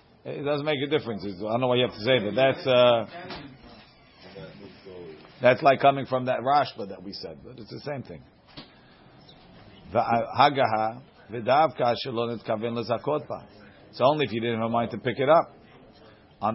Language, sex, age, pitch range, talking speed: English, male, 40-59, 120-145 Hz, 155 wpm